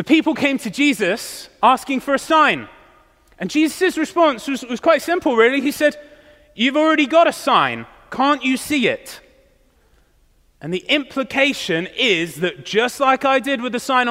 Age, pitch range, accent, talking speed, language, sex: 30-49, 185-270 Hz, British, 170 wpm, English, male